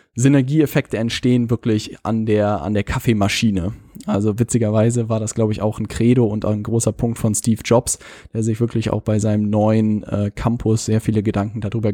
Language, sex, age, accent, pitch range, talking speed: German, male, 10-29, German, 105-120 Hz, 185 wpm